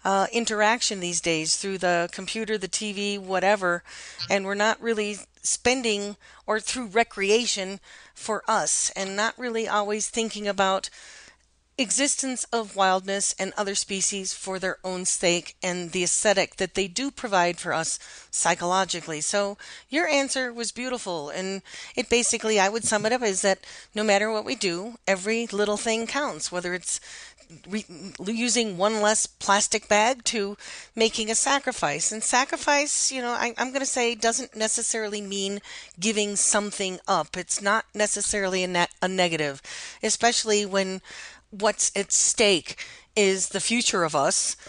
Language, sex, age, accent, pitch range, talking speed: English, female, 40-59, American, 185-225 Hz, 150 wpm